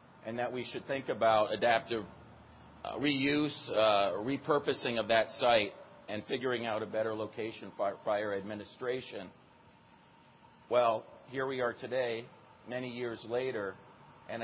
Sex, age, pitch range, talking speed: male, 40-59, 95-115 Hz, 135 wpm